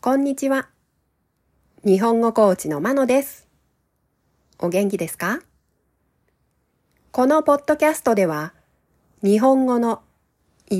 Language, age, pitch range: Japanese, 40-59, 170-275 Hz